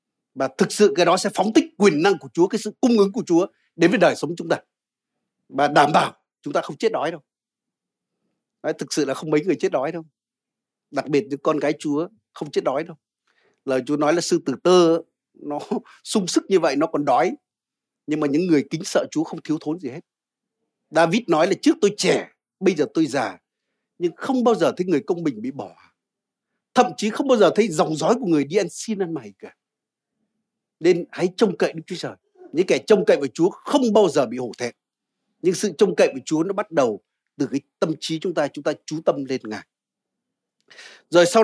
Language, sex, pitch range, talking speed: Vietnamese, male, 155-230 Hz, 230 wpm